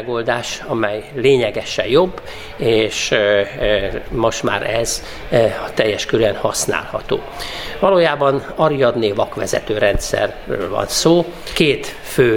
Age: 50-69